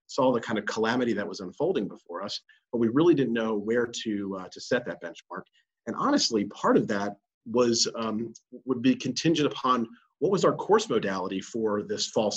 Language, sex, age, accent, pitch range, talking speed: English, male, 40-59, American, 110-140 Hz, 200 wpm